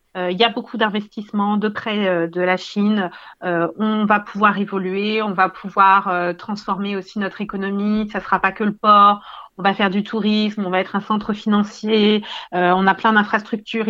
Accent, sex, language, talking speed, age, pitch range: French, female, French, 185 wpm, 40-59, 195-230 Hz